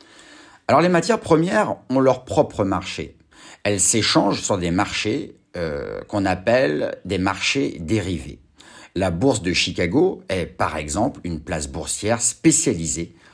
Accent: French